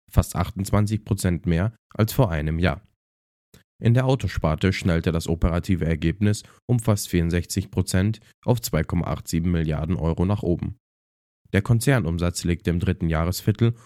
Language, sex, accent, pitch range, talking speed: German, male, German, 85-105 Hz, 125 wpm